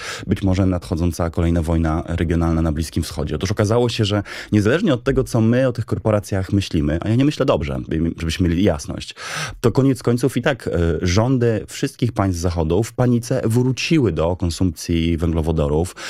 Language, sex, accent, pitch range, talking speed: Polish, male, native, 85-110 Hz, 170 wpm